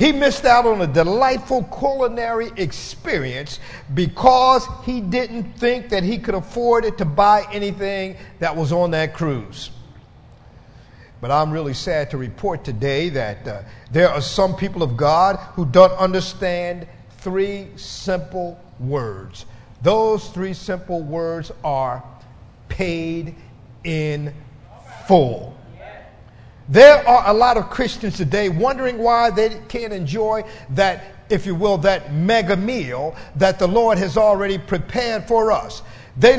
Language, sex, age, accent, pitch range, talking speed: English, male, 50-69, American, 150-230 Hz, 135 wpm